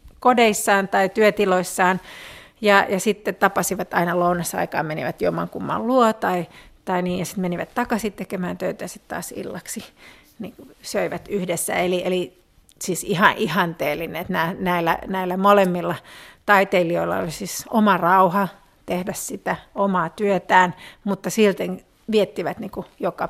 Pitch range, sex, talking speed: 180-215 Hz, female, 135 wpm